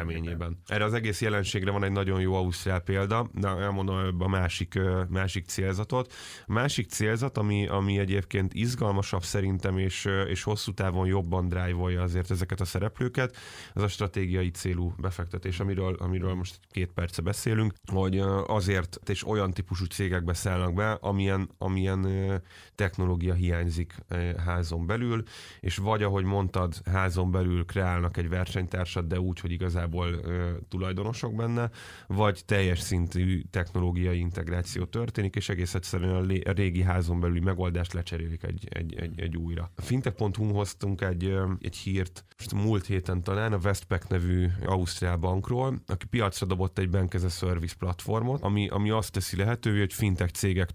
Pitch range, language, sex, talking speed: 90-100 Hz, Hungarian, male, 145 wpm